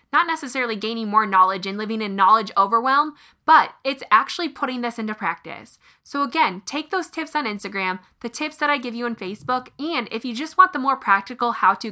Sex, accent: female, American